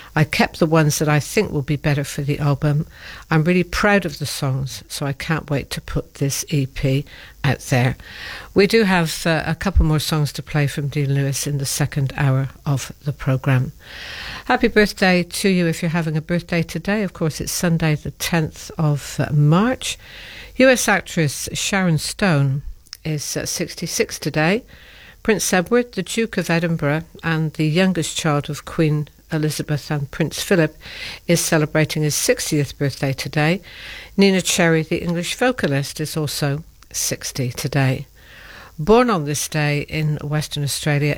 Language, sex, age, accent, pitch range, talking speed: English, female, 60-79, British, 145-170 Hz, 165 wpm